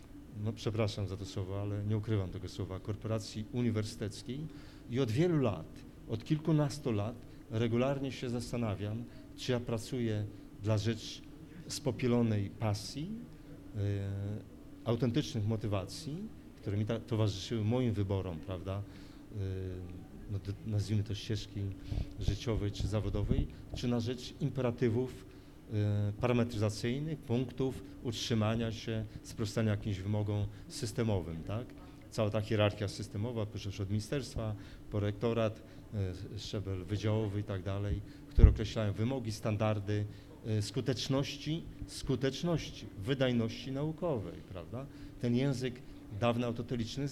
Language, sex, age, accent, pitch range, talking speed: Polish, male, 40-59, native, 100-125 Hz, 105 wpm